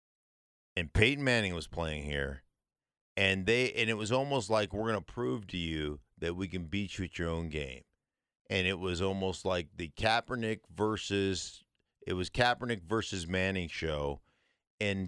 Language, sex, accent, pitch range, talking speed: English, male, American, 95-150 Hz, 170 wpm